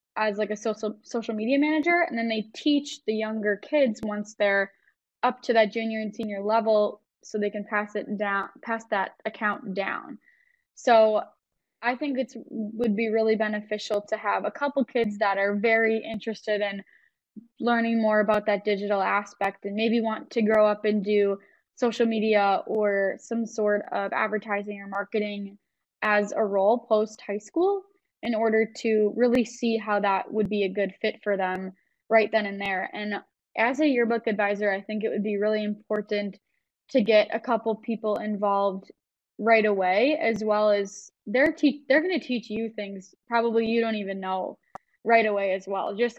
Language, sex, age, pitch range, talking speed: English, female, 10-29, 205-230 Hz, 180 wpm